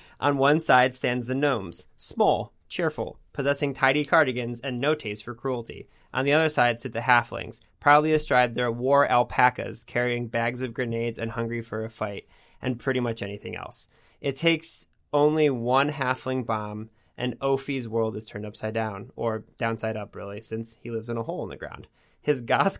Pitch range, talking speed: 115-145 Hz, 185 wpm